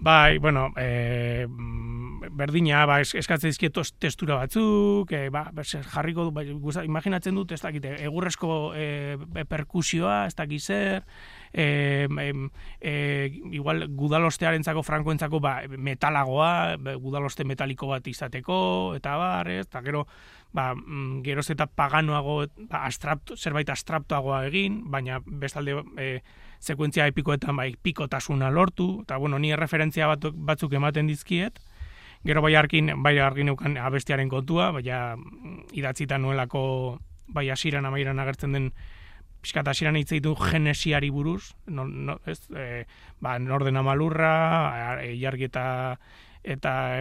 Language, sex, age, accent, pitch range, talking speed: Spanish, male, 30-49, Spanish, 130-155 Hz, 115 wpm